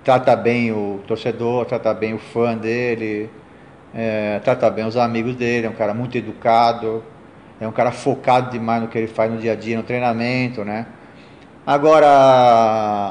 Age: 40-59